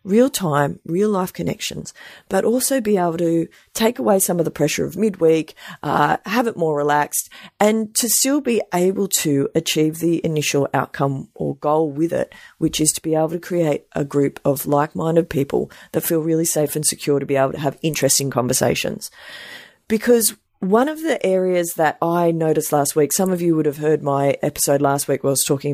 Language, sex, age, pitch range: English, female, 40-59, 145-190 Hz